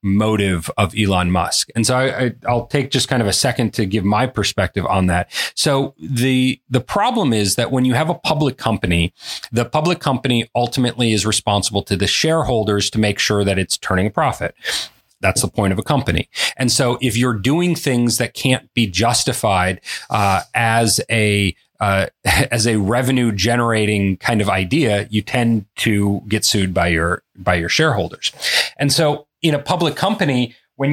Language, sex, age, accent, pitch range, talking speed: English, male, 30-49, American, 105-135 Hz, 180 wpm